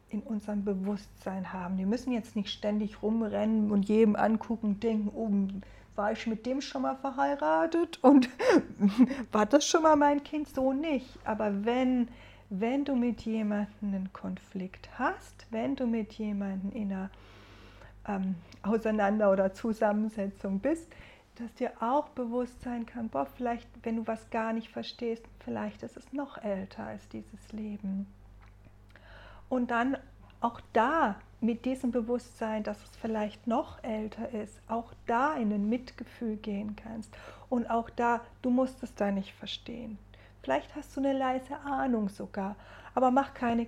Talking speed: 155 wpm